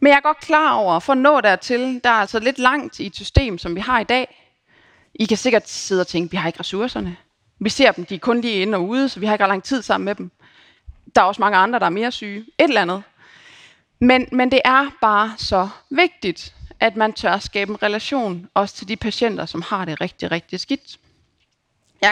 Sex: female